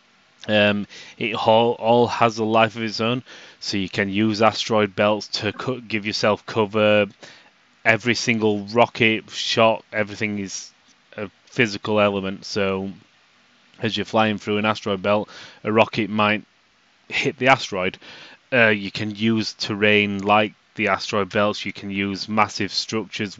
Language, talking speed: English, 145 wpm